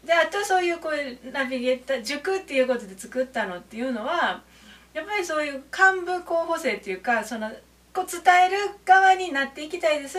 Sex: female